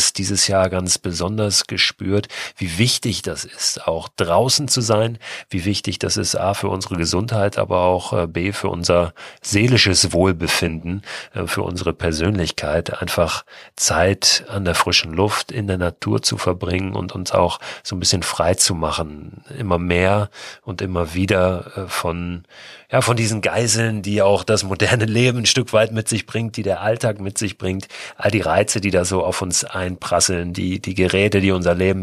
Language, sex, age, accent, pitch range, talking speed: German, male, 40-59, German, 90-105 Hz, 175 wpm